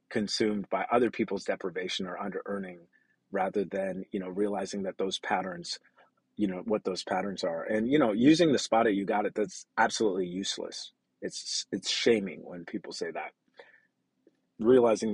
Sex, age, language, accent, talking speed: male, 40-59, English, American, 170 wpm